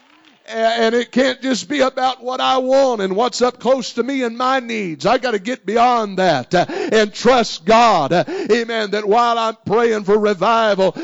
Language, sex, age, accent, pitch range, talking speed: English, male, 50-69, American, 185-235 Hz, 185 wpm